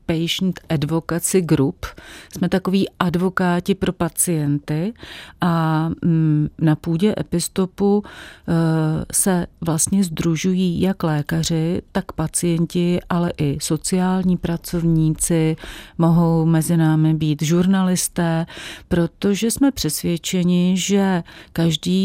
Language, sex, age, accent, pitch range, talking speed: Czech, female, 40-59, native, 155-175 Hz, 90 wpm